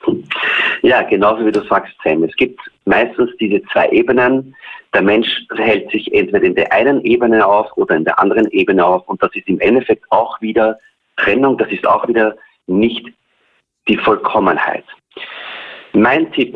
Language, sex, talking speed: German, male, 165 wpm